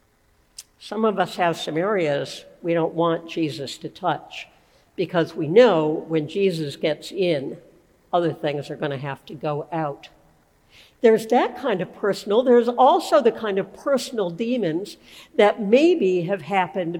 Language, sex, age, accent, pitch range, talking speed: English, female, 60-79, American, 165-220 Hz, 155 wpm